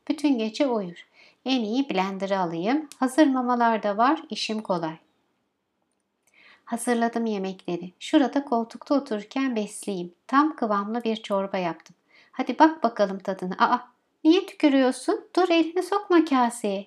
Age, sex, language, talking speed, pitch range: 60-79, female, Turkish, 120 wpm, 210-290 Hz